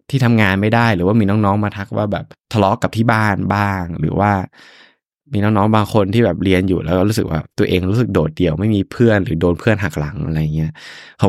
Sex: male